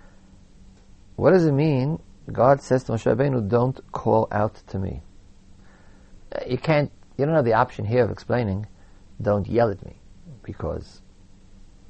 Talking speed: 150 wpm